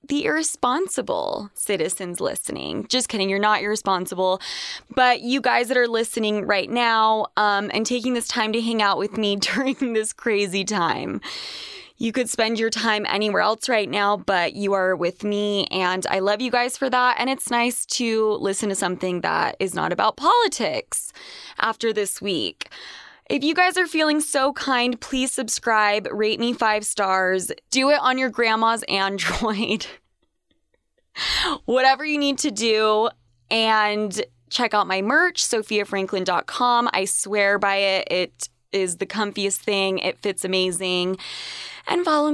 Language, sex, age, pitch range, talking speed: English, female, 20-39, 200-250 Hz, 155 wpm